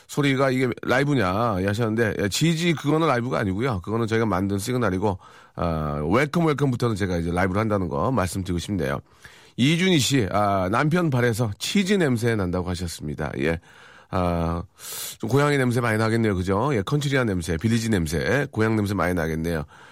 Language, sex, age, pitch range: Korean, male, 40-59, 95-135 Hz